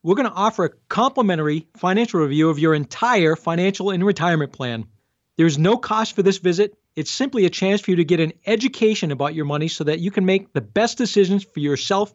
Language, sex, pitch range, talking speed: English, male, 165-230 Hz, 215 wpm